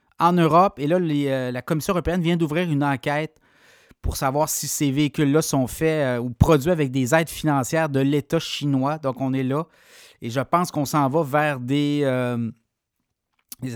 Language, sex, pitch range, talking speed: French, male, 130-165 Hz, 185 wpm